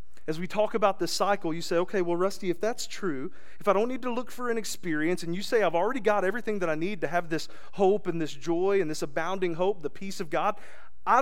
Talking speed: 260 wpm